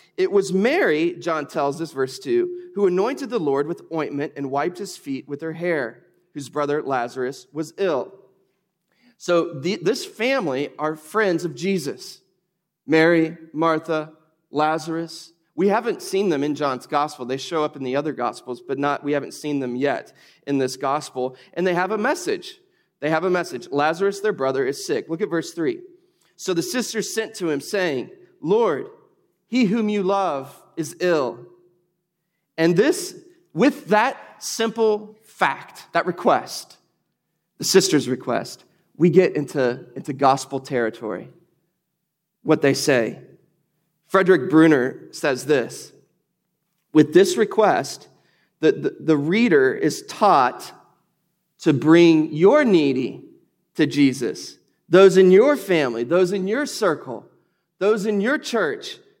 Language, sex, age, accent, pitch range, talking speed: English, male, 30-49, American, 150-210 Hz, 145 wpm